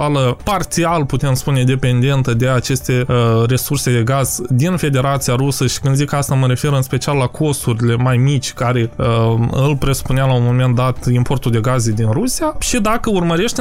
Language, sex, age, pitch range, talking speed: Romanian, male, 20-39, 125-165 Hz, 170 wpm